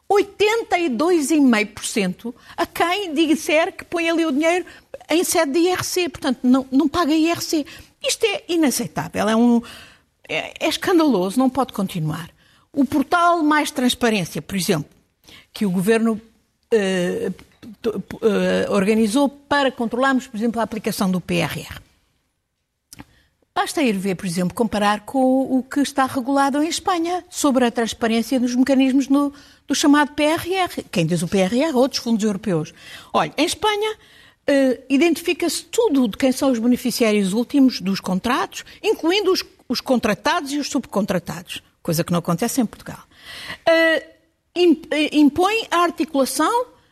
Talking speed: 135 wpm